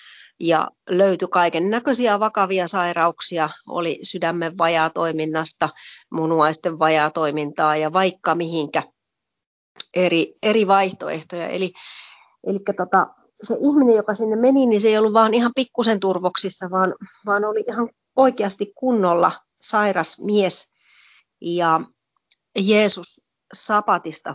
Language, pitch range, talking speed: Finnish, 170-215 Hz, 110 wpm